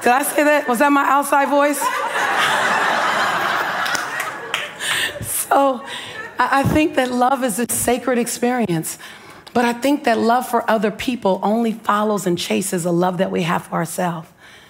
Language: English